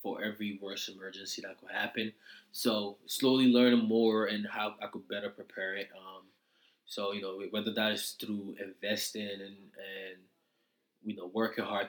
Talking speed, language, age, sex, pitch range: 165 wpm, English, 20-39, male, 100-115 Hz